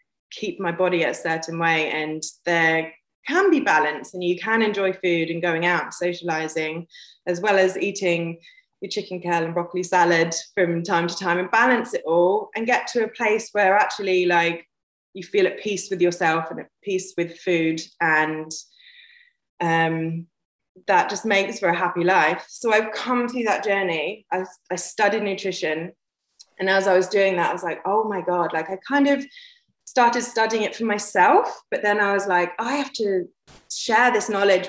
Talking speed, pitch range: 185 wpm, 170-210 Hz